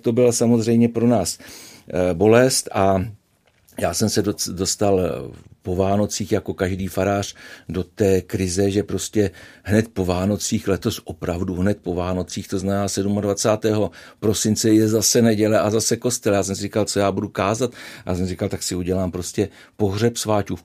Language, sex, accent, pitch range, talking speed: Czech, male, native, 90-105 Hz, 170 wpm